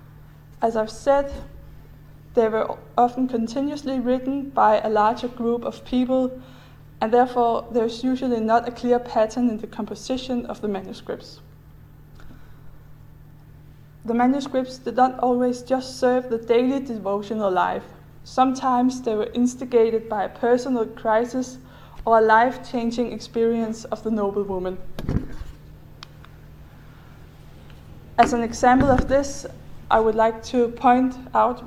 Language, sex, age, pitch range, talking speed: English, female, 20-39, 220-250 Hz, 125 wpm